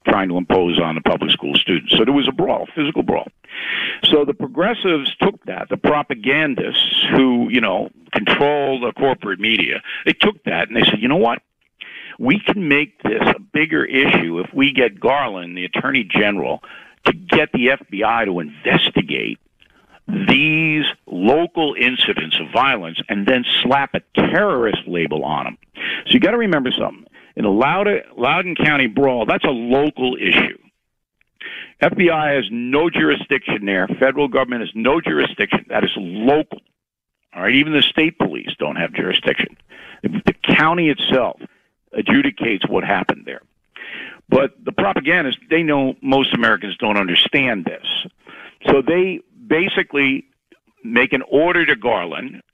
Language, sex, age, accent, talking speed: English, male, 50-69, American, 150 wpm